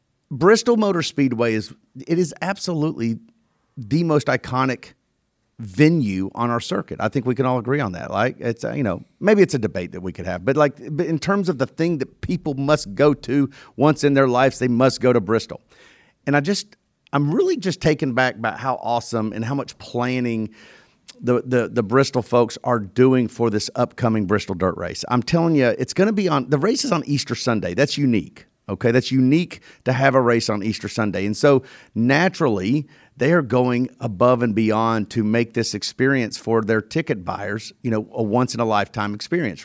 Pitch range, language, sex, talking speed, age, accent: 115-145 Hz, English, male, 205 wpm, 40-59, American